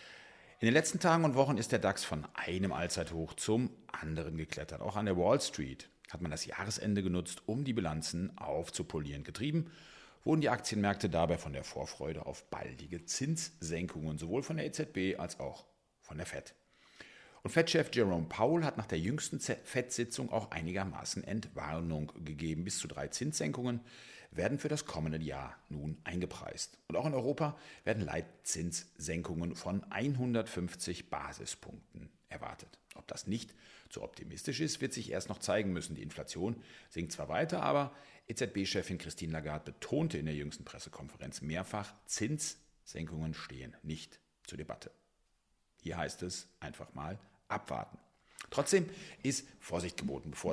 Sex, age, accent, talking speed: male, 40-59, German, 150 wpm